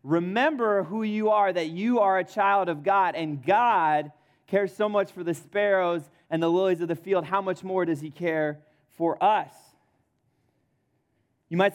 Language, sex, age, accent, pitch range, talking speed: English, male, 20-39, American, 130-180 Hz, 180 wpm